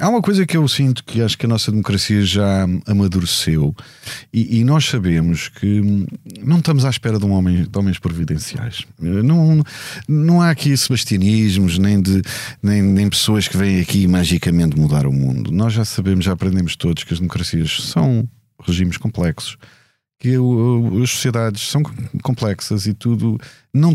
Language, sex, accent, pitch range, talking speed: Portuguese, male, Portuguese, 95-125 Hz, 160 wpm